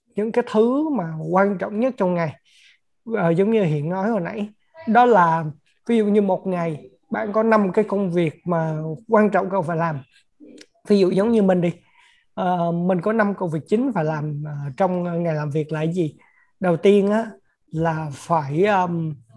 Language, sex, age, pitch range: Vietnamese, male, 20-39, 165-215 Hz